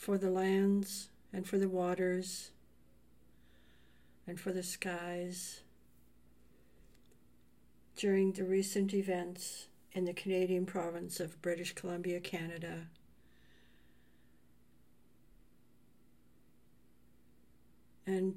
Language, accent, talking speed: English, American, 80 wpm